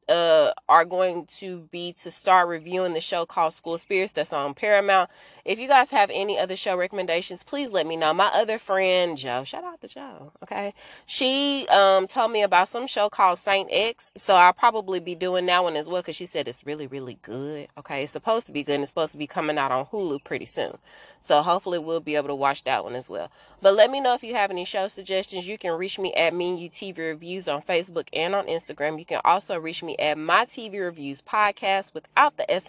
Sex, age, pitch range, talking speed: female, 20-39, 150-195 Hz, 235 wpm